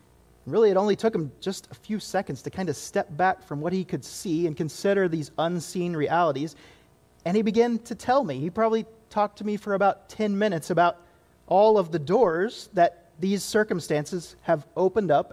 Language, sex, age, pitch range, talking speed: English, male, 30-49, 155-220 Hz, 195 wpm